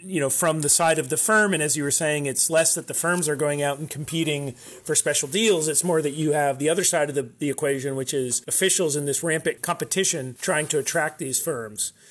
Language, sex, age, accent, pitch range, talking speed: English, male, 30-49, American, 140-170 Hz, 250 wpm